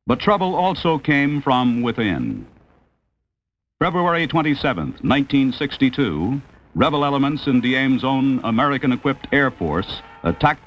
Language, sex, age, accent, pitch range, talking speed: English, male, 60-79, American, 115-145 Hz, 100 wpm